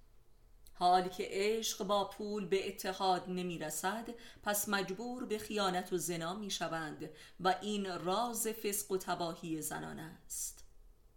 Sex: female